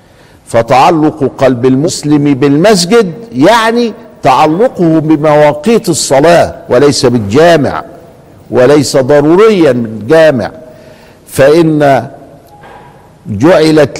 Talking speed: 65 wpm